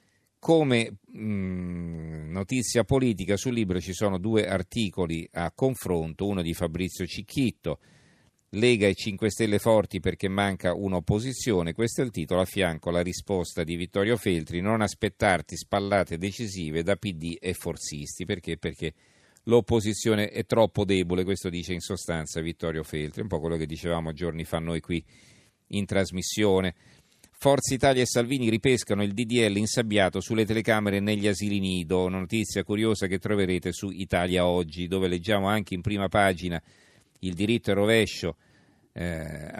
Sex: male